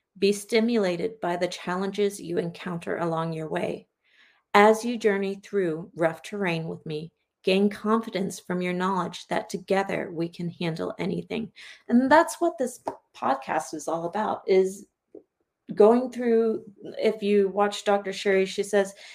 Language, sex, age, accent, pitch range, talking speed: English, female, 40-59, American, 180-220 Hz, 145 wpm